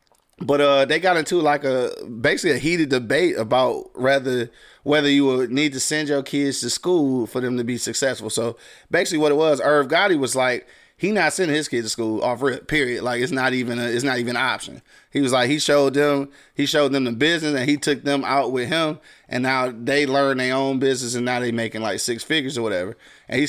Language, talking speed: English, 240 wpm